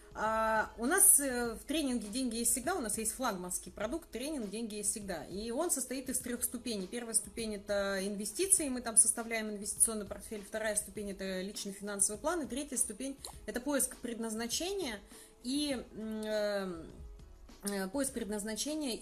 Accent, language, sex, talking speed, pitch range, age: native, Russian, female, 145 wpm, 205-250 Hz, 30-49